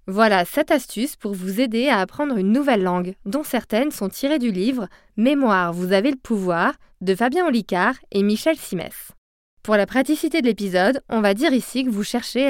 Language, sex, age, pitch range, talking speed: French, female, 20-39, 195-265 Hz, 200 wpm